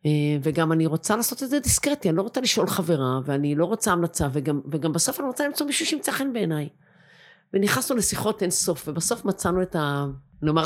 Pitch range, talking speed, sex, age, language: 145-180 Hz, 195 wpm, female, 50-69, Hebrew